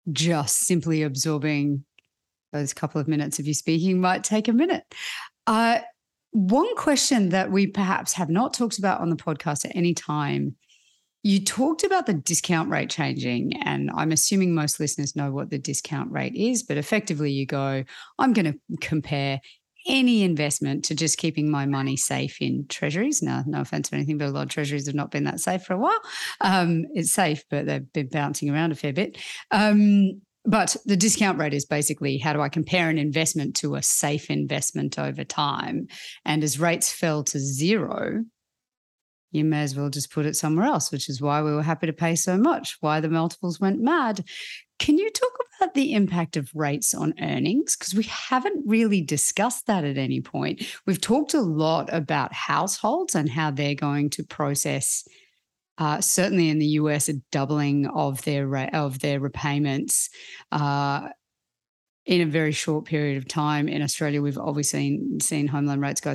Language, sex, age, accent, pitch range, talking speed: English, female, 40-59, Australian, 145-195 Hz, 185 wpm